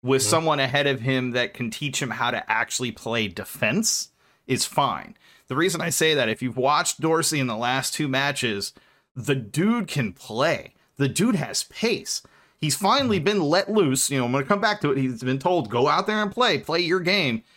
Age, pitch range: 30-49, 130-185 Hz